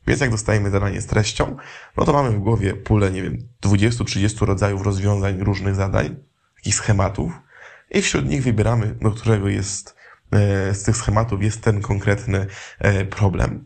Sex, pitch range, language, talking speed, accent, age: male, 100-120 Hz, Polish, 155 wpm, native, 20-39